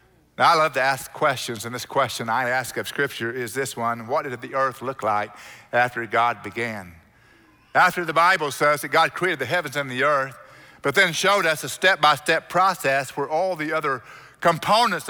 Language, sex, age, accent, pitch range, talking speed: English, male, 60-79, American, 125-165 Hz, 195 wpm